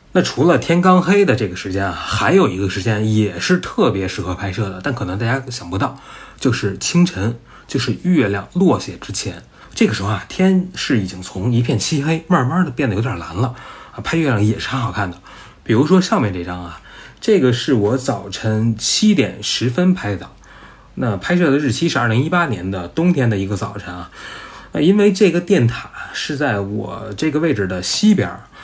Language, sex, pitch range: Chinese, male, 100-140 Hz